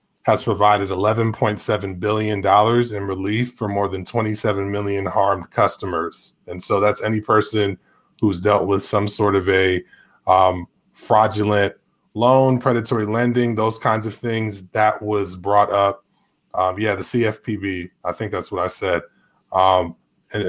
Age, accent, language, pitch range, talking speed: 20-39, American, English, 100-115 Hz, 145 wpm